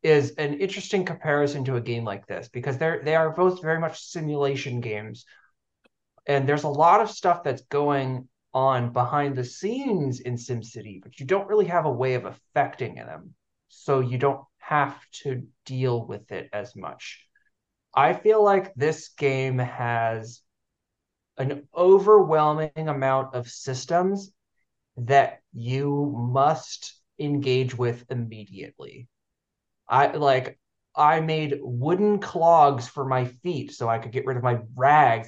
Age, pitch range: 30-49, 125-175 Hz